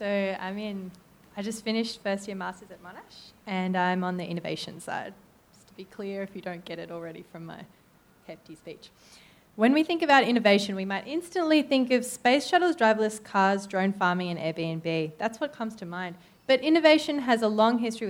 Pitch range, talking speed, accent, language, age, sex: 180-225 Hz, 200 wpm, Australian, English, 20-39, female